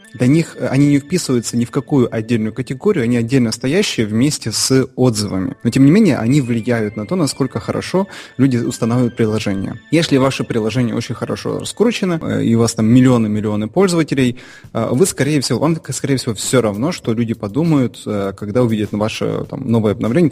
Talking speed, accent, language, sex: 170 wpm, native, Russian, male